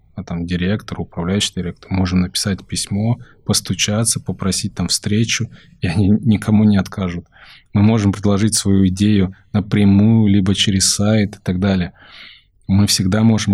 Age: 20-39